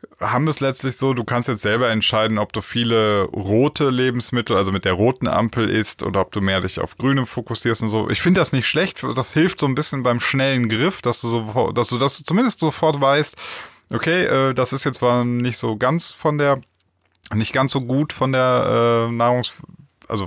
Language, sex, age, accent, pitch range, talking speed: German, male, 20-39, German, 105-135 Hz, 215 wpm